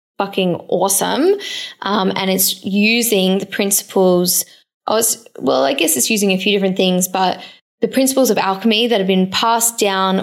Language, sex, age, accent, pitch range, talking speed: English, female, 20-39, Australian, 190-225 Hz, 170 wpm